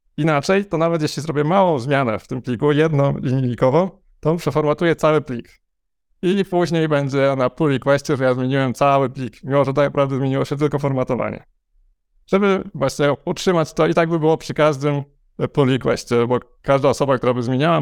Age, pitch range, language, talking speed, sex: 20-39, 125-150 Hz, Polish, 180 wpm, male